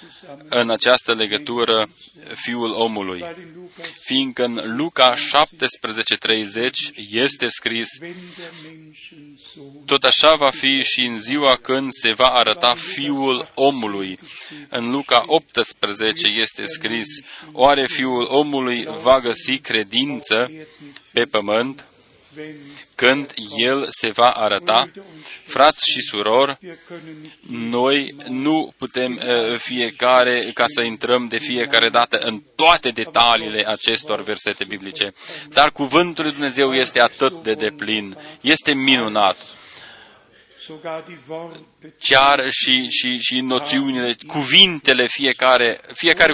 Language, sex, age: Romanian, male, 30-49